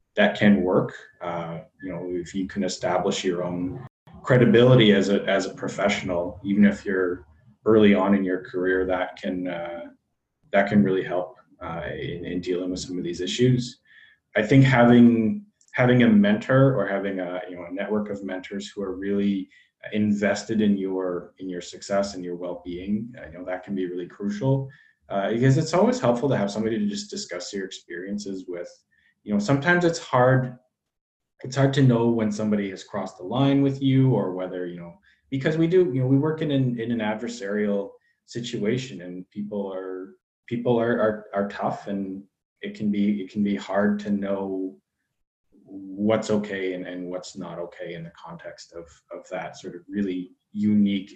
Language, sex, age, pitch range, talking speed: English, male, 20-39, 90-120 Hz, 190 wpm